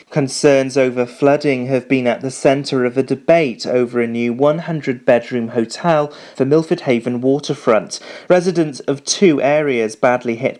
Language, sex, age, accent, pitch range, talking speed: English, male, 30-49, British, 125-155 Hz, 145 wpm